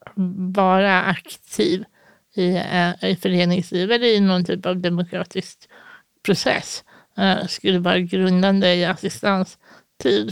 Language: Swedish